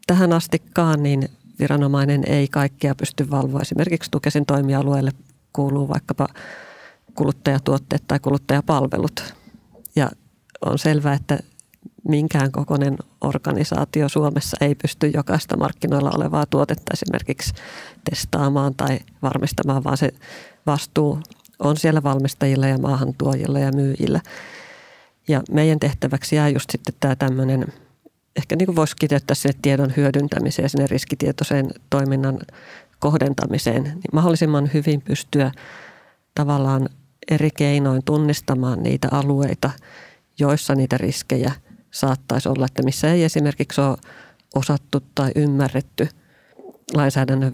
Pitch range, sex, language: 135-150 Hz, female, Finnish